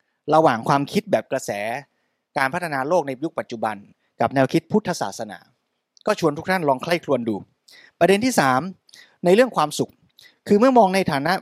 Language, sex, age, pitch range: Thai, male, 20-39, 135-190 Hz